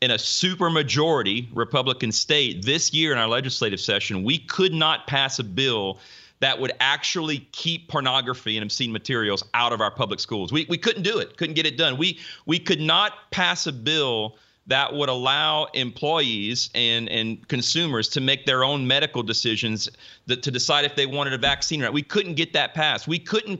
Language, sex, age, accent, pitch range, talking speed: English, male, 40-59, American, 125-165 Hz, 195 wpm